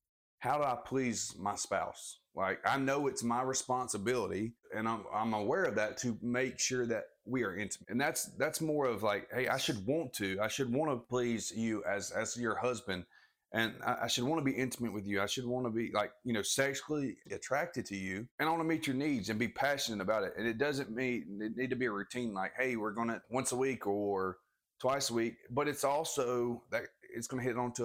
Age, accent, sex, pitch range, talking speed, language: 30-49, American, male, 110-130 Hz, 235 wpm, English